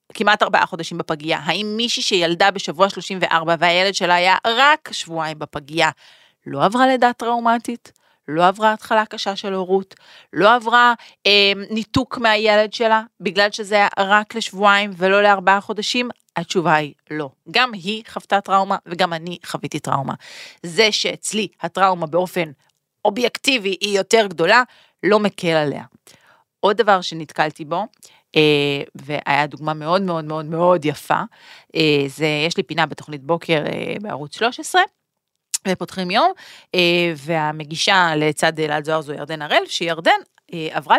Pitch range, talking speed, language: 160-210 Hz, 135 wpm, Hebrew